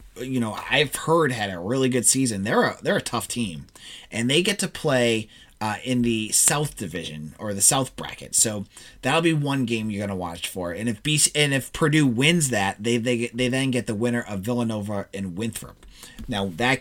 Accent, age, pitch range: American, 30-49, 100-130 Hz